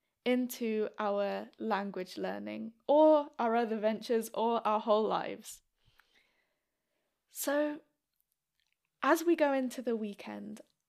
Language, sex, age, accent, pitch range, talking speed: English, female, 10-29, British, 215-275 Hz, 105 wpm